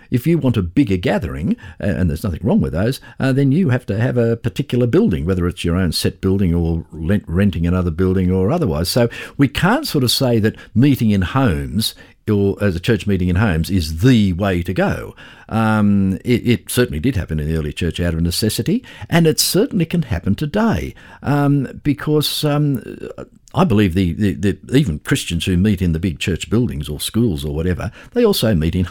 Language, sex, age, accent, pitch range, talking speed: English, male, 50-69, Australian, 85-120 Hz, 210 wpm